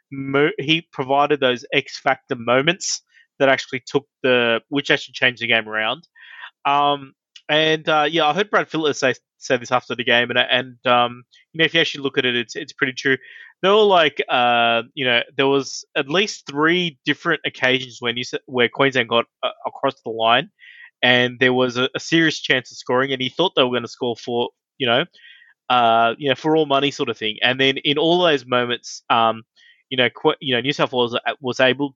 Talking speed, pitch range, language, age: 210 wpm, 120-145 Hz, English, 20-39